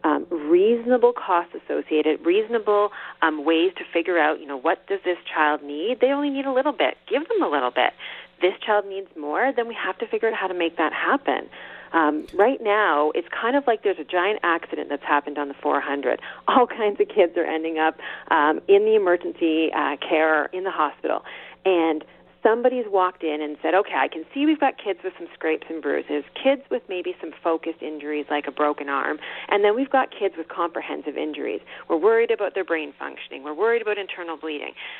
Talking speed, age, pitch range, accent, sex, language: 210 wpm, 40-59, 160-265 Hz, American, female, English